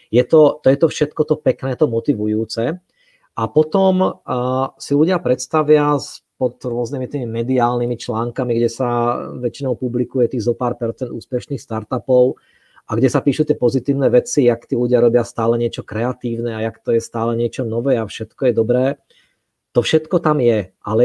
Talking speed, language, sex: 175 wpm, Czech, male